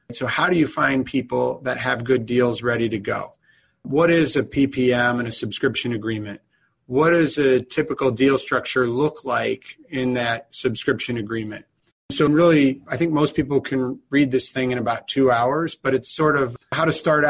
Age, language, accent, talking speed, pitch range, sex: 40-59, English, American, 185 wpm, 115-135 Hz, male